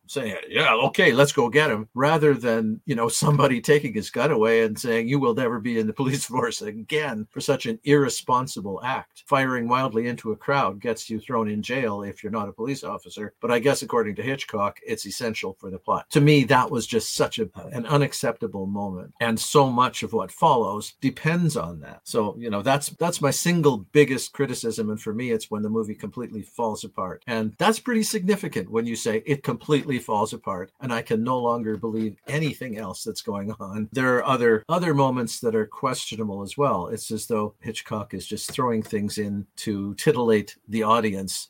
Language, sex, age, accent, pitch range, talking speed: English, male, 50-69, American, 110-140 Hz, 205 wpm